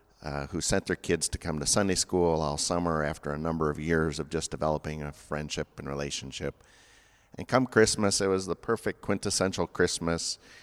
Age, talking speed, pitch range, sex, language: 50-69, 185 wpm, 75-90 Hz, male, English